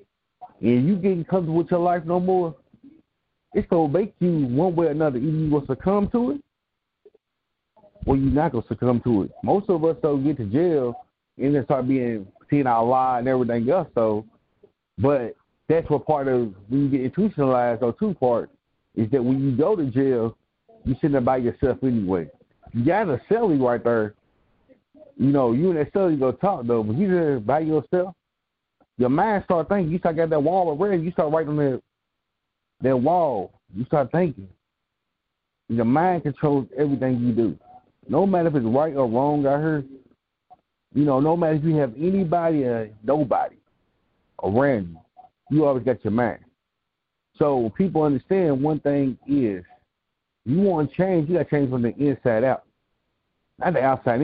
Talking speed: 185 wpm